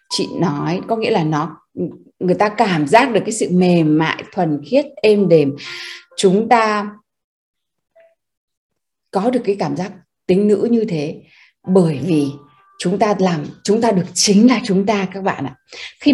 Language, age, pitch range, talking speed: Vietnamese, 20-39, 180-245 Hz, 170 wpm